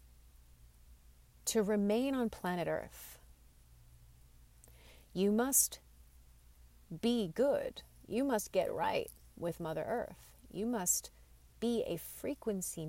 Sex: female